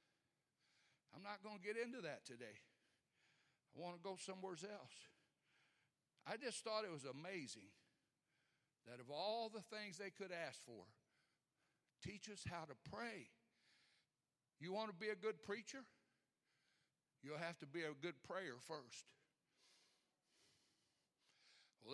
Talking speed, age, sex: 135 wpm, 60-79, male